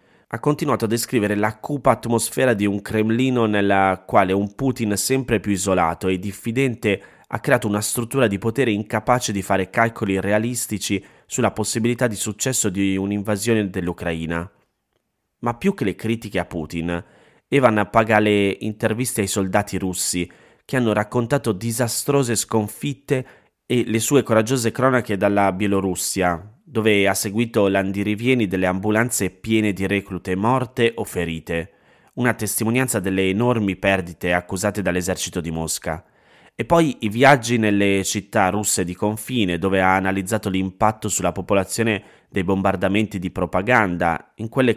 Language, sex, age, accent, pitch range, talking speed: Italian, male, 30-49, native, 95-115 Hz, 140 wpm